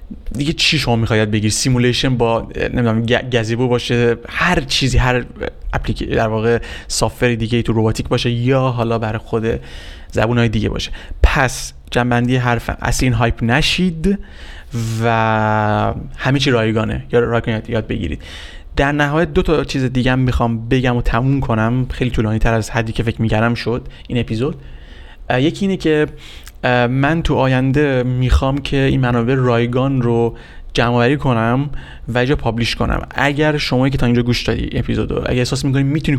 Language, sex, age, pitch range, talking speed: Persian, male, 30-49, 115-130 Hz, 155 wpm